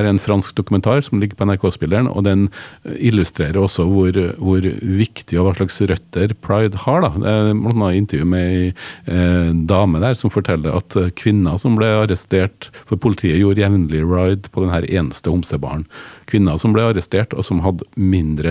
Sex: male